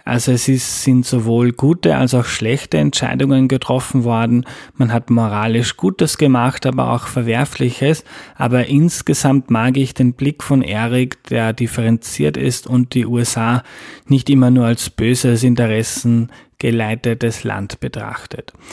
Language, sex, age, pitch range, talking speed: German, male, 20-39, 115-130 Hz, 140 wpm